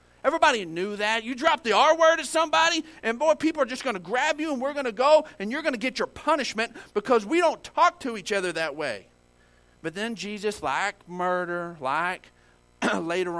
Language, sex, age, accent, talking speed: English, male, 40-59, American, 210 wpm